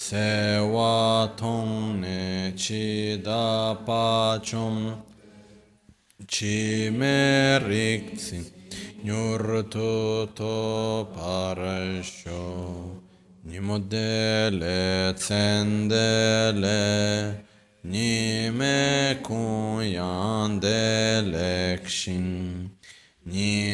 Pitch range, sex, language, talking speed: 95-110 Hz, male, Italian, 35 wpm